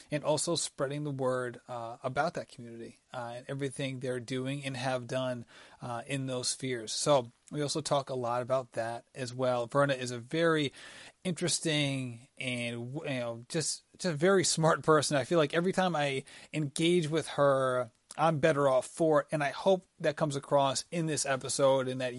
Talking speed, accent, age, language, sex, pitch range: 190 wpm, American, 30-49, English, male, 130-165 Hz